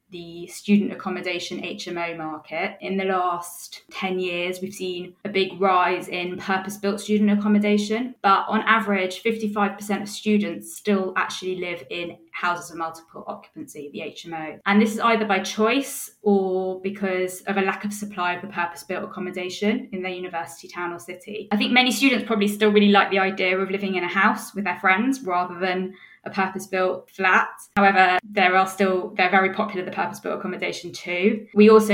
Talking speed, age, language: 170 wpm, 20-39, English